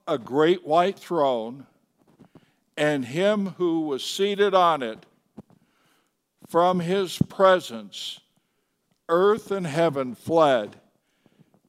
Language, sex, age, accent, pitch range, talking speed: English, male, 60-79, American, 130-185 Hz, 90 wpm